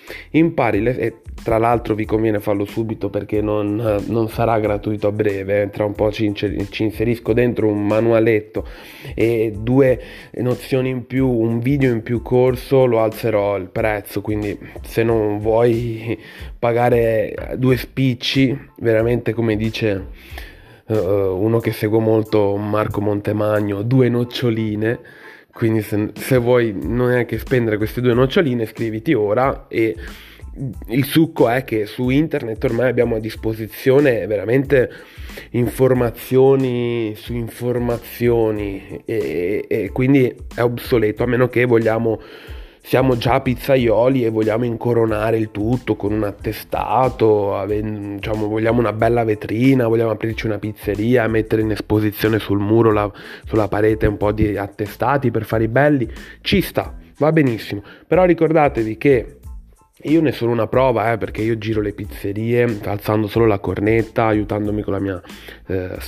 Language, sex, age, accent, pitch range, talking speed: Italian, male, 20-39, native, 105-120 Hz, 140 wpm